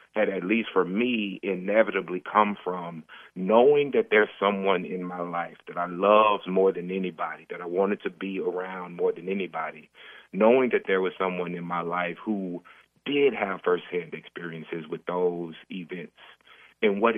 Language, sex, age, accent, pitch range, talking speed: English, male, 30-49, American, 90-105 Hz, 170 wpm